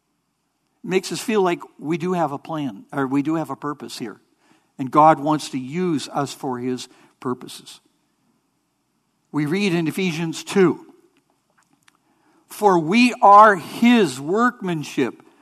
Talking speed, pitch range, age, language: 135 wpm, 150-215 Hz, 60-79, English